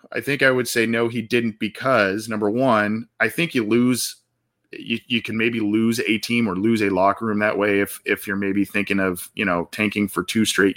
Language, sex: English, male